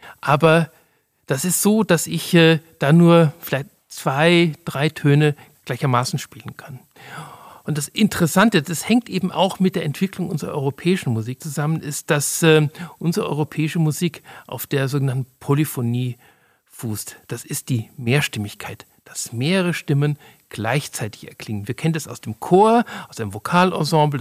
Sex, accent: male, German